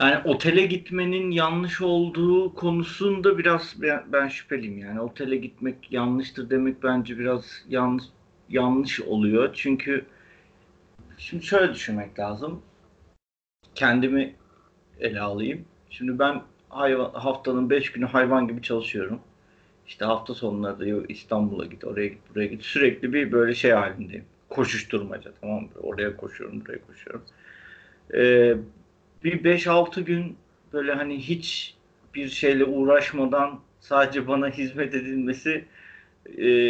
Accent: native